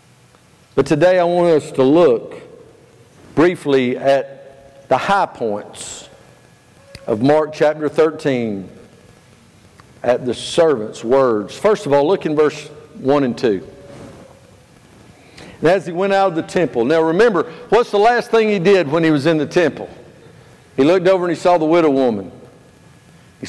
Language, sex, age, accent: English, male, 50-69, American